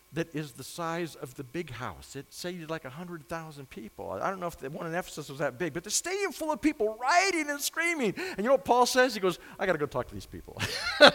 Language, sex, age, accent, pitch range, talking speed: English, male, 50-69, American, 130-200 Hz, 265 wpm